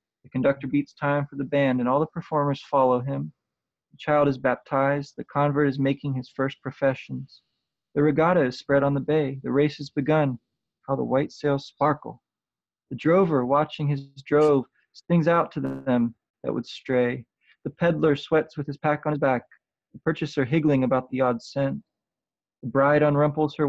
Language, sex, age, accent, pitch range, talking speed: English, male, 20-39, American, 125-150 Hz, 180 wpm